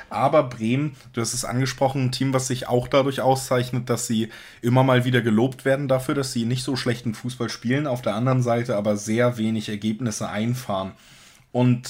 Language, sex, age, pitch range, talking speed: German, male, 20-39, 110-130 Hz, 190 wpm